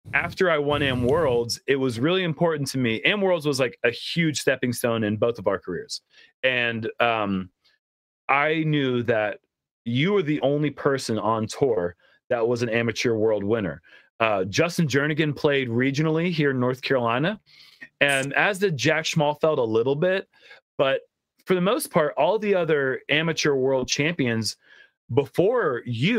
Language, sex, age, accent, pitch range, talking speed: English, male, 30-49, American, 120-150 Hz, 165 wpm